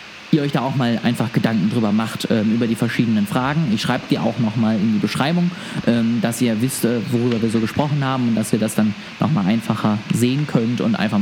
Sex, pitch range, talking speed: male, 120-175 Hz, 240 wpm